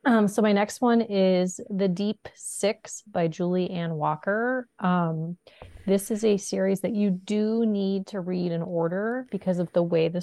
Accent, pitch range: American, 170-205 Hz